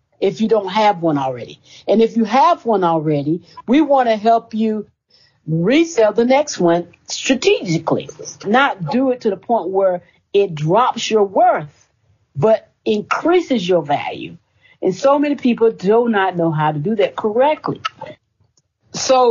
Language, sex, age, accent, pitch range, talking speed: English, female, 50-69, American, 170-245 Hz, 155 wpm